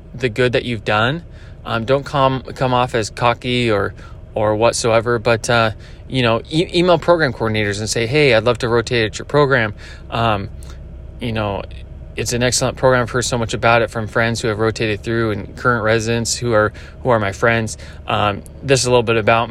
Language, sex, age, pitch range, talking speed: English, male, 20-39, 105-130 Hz, 205 wpm